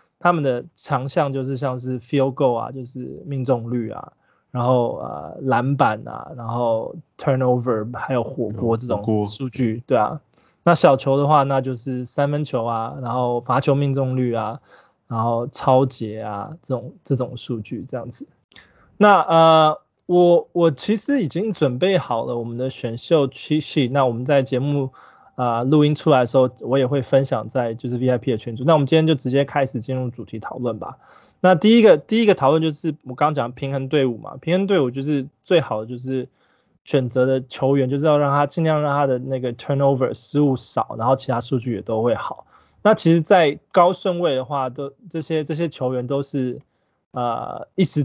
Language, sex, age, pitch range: Chinese, male, 20-39, 125-155 Hz